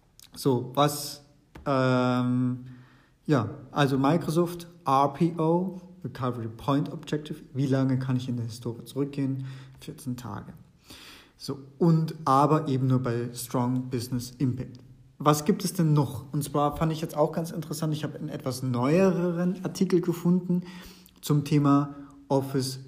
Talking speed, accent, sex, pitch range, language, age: 135 wpm, German, male, 130-155 Hz, German, 40-59